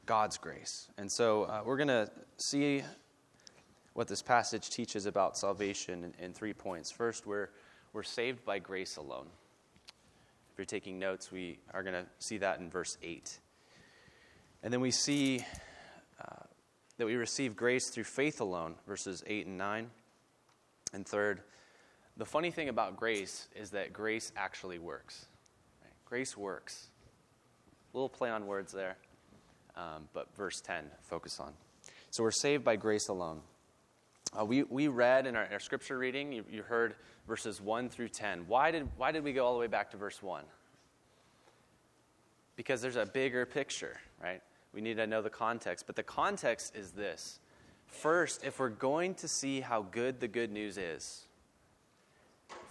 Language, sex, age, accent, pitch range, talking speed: English, male, 20-39, American, 100-125 Hz, 165 wpm